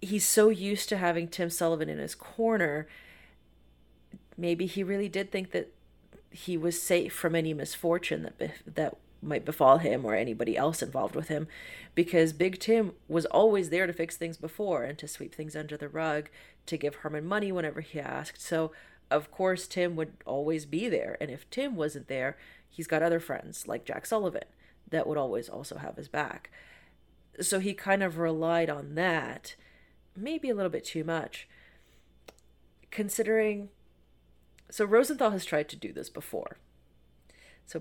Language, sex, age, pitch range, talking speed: English, female, 30-49, 150-185 Hz, 170 wpm